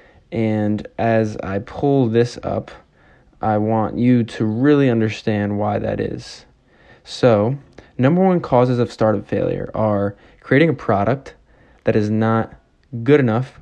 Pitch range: 105-120 Hz